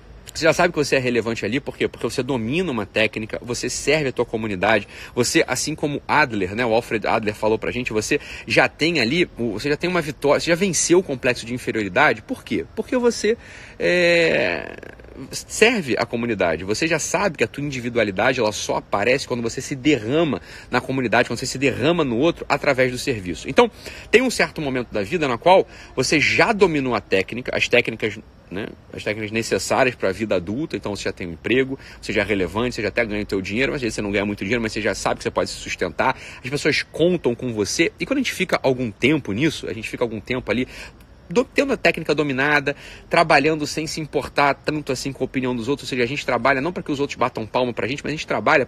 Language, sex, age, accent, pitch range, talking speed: Portuguese, male, 40-59, Brazilian, 120-160 Hz, 235 wpm